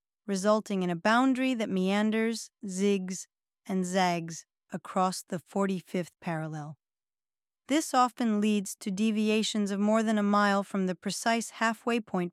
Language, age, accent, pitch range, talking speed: English, 40-59, American, 185-230 Hz, 135 wpm